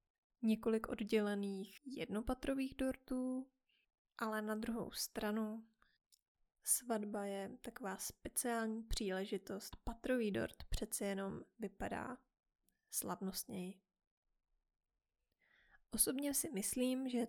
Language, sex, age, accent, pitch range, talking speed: Czech, female, 20-39, native, 210-245 Hz, 80 wpm